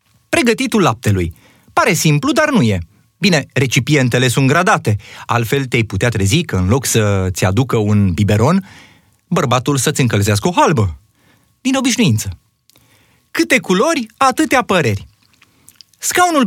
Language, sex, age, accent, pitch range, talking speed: Romanian, male, 30-49, native, 115-175 Hz, 125 wpm